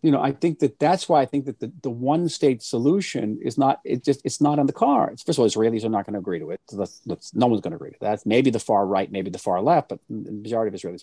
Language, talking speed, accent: English, 320 wpm, American